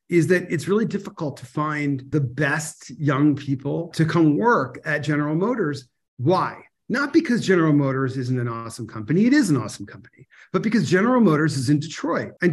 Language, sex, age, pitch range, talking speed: English, male, 40-59, 140-200 Hz, 185 wpm